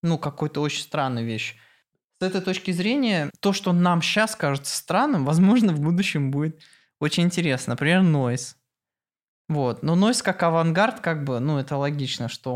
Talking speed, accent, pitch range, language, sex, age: 160 wpm, native, 135-175 Hz, Russian, male, 20-39